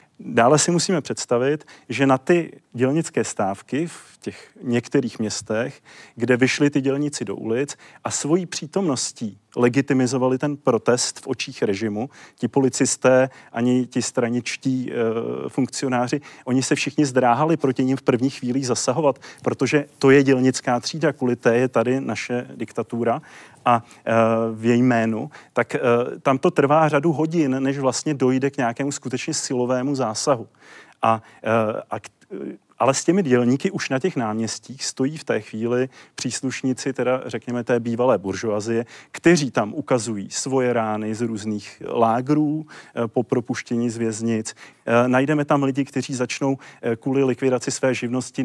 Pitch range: 120-145 Hz